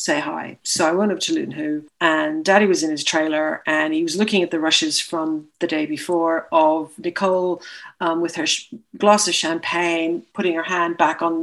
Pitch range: 170-205 Hz